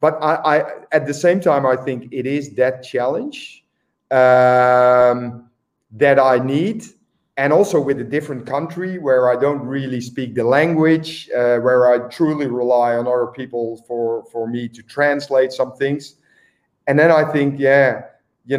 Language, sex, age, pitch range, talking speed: English, male, 40-59, 125-145 Hz, 165 wpm